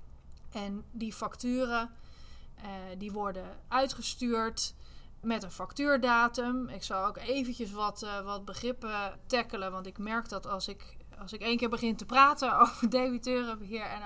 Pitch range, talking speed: 195-230 Hz, 150 wpm